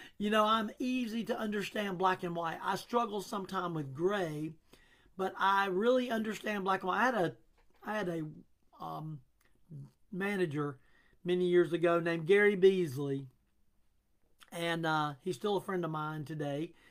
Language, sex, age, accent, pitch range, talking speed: English, male, 50-69, American, 170-215 Hz, 155 wpm